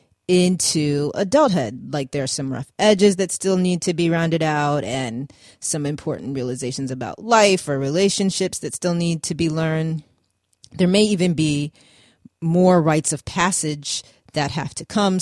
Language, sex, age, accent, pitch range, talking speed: English, female, 30-49, American, 150-180 Hz, 160 wpm